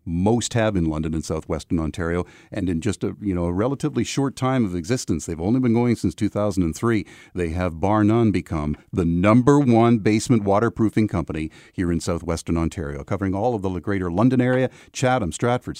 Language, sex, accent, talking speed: English, male, American, 185 wpm